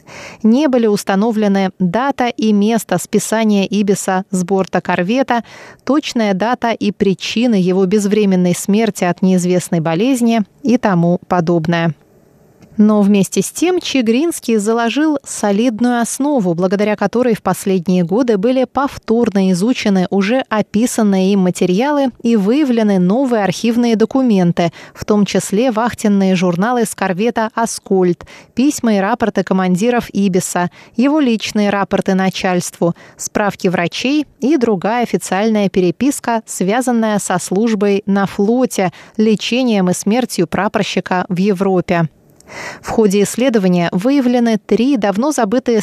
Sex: female